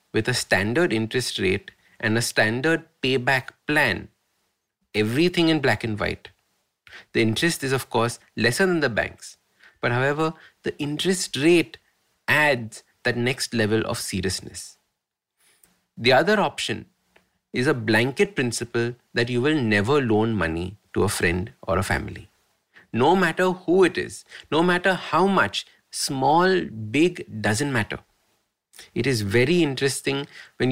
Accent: Indian